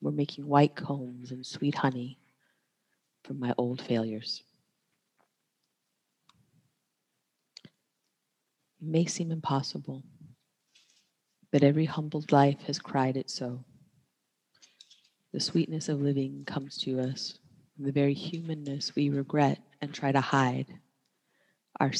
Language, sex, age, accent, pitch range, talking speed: English, female, 30-49, American, 130-155 Hz, 110 wpm